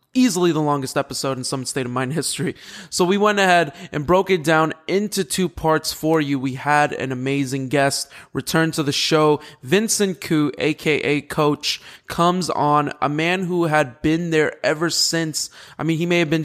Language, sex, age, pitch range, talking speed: English, male, 20-39, 150-180 Hz, 180 wpm